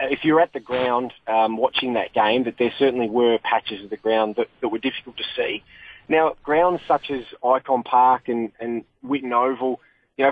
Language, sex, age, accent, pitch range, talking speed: English, male, 20-39, Australian, 120-140 Hz, 205 wpm